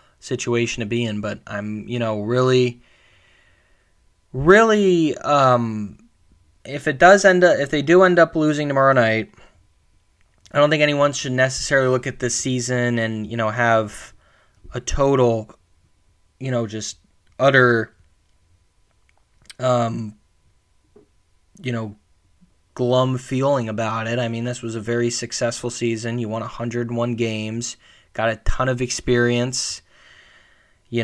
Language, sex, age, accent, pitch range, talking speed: English, male, 20-39, American, 115-130 Hz, 135 wpm